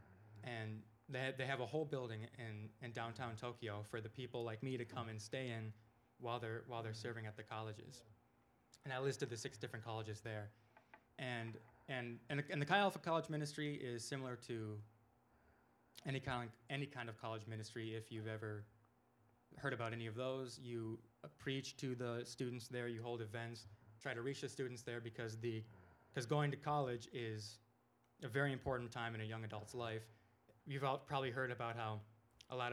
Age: 20-39